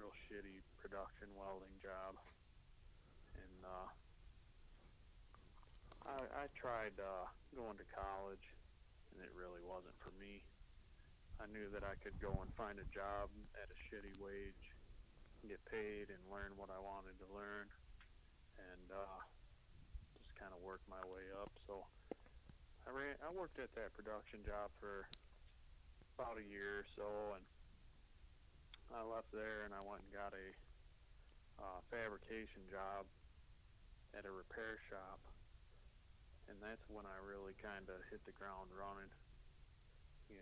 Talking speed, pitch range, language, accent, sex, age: 140 wpm, 90-100 Hz, English, American, male, 30-49